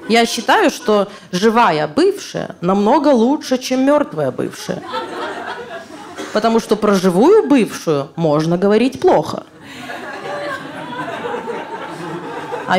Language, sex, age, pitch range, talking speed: Russian, female, 20-39, 185-250 Hz, 90 wpm